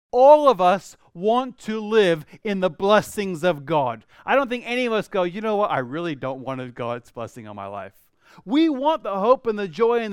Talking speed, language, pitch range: 225 wpm, English, 175-245 Hz